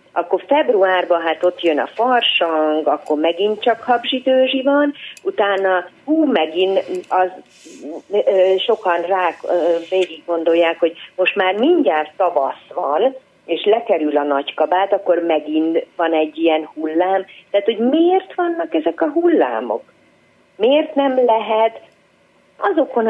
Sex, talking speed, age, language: female, 130 wpm, 40-59, Hungarian